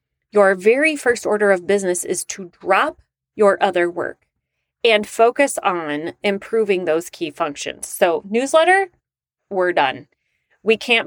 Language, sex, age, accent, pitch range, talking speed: English, female, 30-49, American, 180-245 Hz, 135 wpm